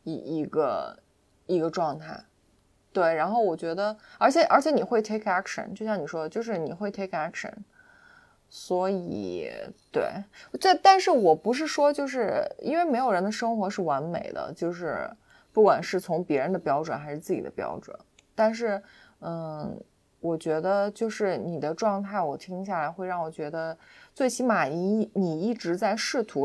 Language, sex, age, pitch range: Chinese, female, 20-39, 170-225 Hz